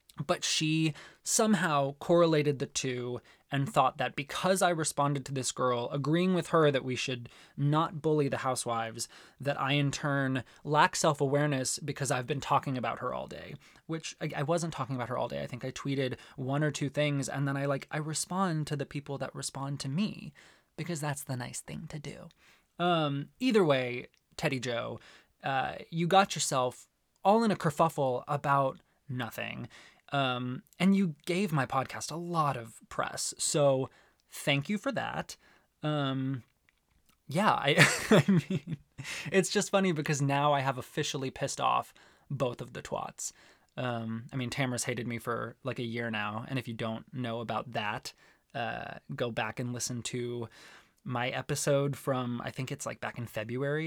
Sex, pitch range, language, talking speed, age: male, 125-155 Hz, English, 175 wpm, 20-39